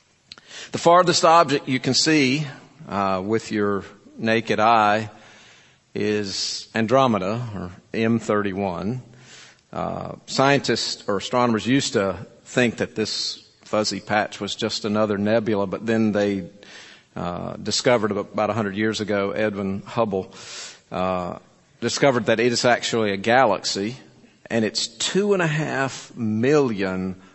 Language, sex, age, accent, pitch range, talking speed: English, male, 50-69, American, 105-130 Hz, 125 wpm